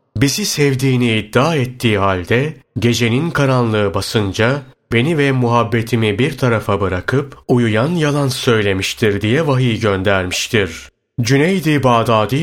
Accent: native